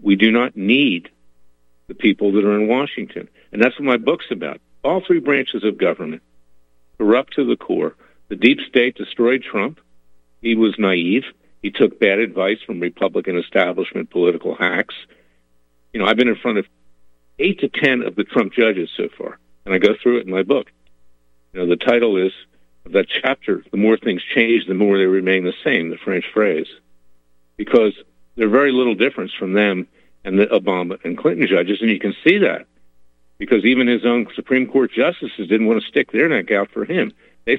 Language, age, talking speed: English, 50-69, 195 wpm